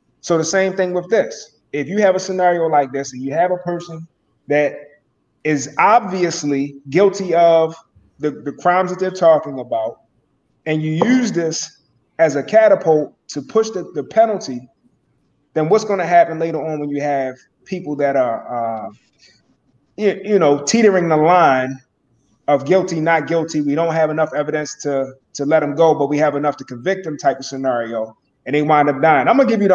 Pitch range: 140-180 Hz